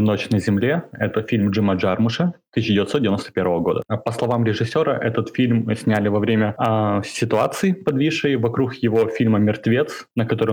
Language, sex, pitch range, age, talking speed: Russian, male, 105-115 Hz, 20-39, 150 wpm